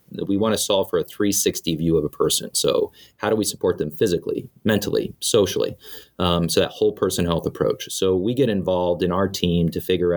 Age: 30-49